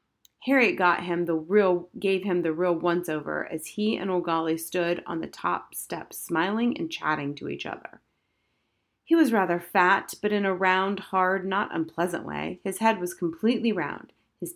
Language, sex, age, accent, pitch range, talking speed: English, female, 30-49, American, 165-210 Hz, 160 wpm